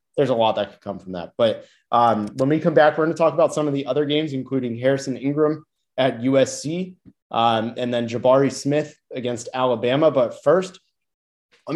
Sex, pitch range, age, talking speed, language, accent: male, 125-150 Hz, 30-49, 200 wpm, English, American